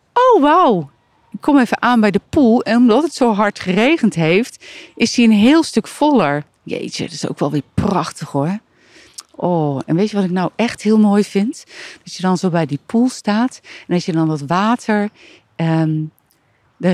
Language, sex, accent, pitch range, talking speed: Dutch, female, Dutch, 155-205 Hz, 200 wpm